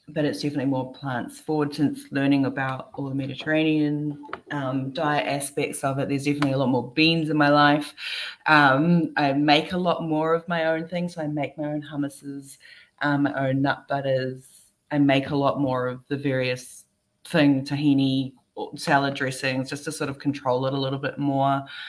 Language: English